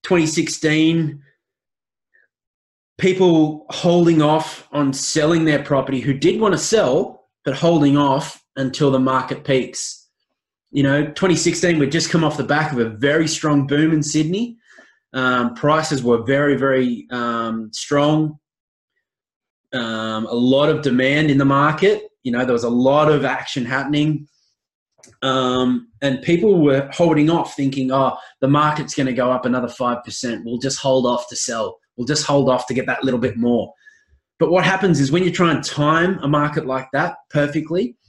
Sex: male